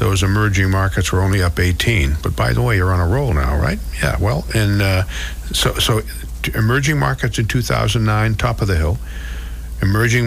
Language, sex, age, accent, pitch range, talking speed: English, male, 60-79, American, 90-115 Hz, 185 wpm